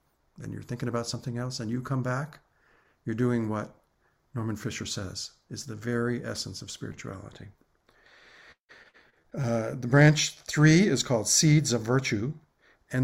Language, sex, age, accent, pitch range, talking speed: English, male, 50-69, American, 110-135 Hz, 145 wpm